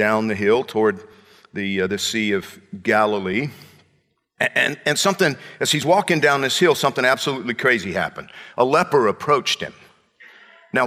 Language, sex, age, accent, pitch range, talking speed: English, male, 50-69, American, 125-185 Hz, 160 wpm